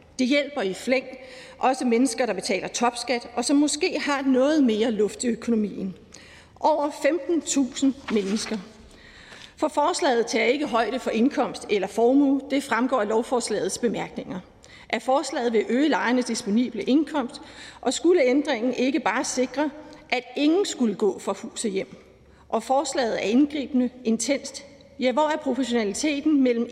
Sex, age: female, 40-59